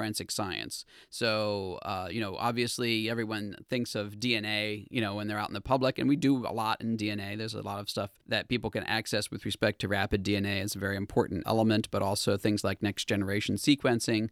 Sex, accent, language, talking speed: male, American, English, 220 wpm